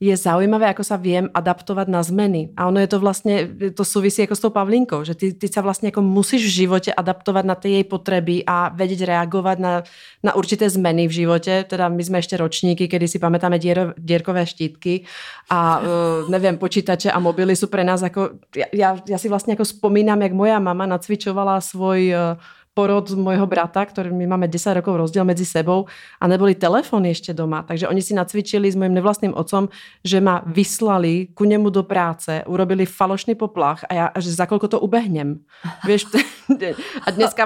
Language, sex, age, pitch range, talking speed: Czech, female, 30-49, 180-200 Hz, 195 wpm